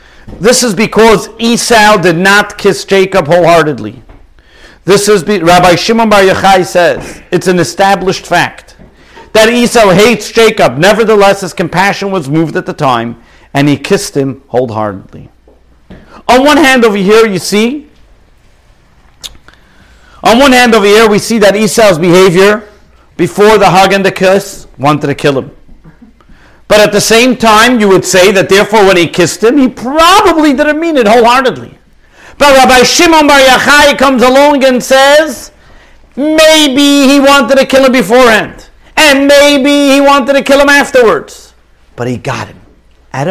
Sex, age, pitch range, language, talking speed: male, 50-69, 170-255 Hz, English, 160 wpm